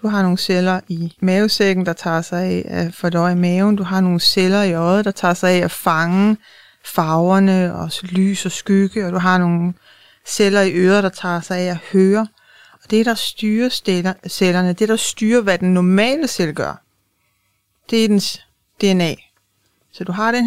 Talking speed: 190 wpm